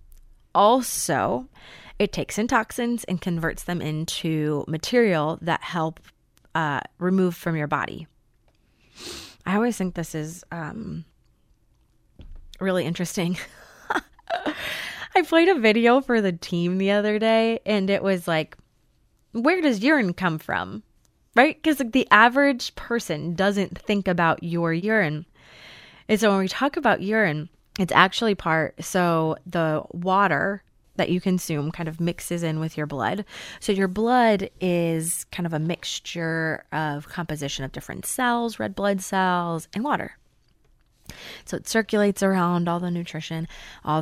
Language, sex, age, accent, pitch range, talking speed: English, female, 20-39, American, 160-205 Hz, 140 wpm